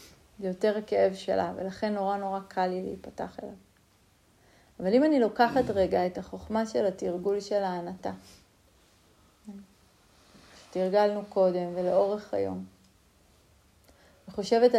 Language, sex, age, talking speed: Hebrew, female, 30-49, 110 wpm